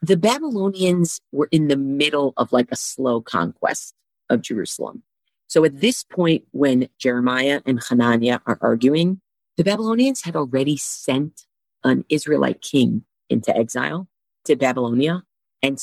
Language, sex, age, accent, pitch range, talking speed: English, female, 40-59, American, 125-180 Hz, 135 wpm